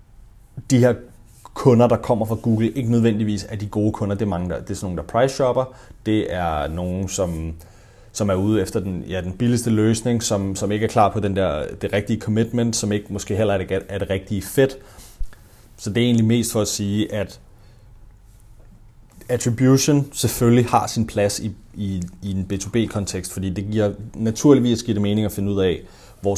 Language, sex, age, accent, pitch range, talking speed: Danish, male, 30-49, native, 100-115 Hz, 200 wpm